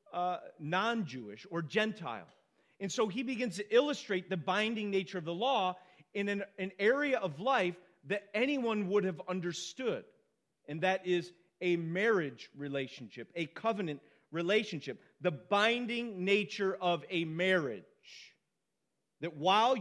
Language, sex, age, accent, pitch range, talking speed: English, male, 40-59, American, 175-225 Hz, 135 wpm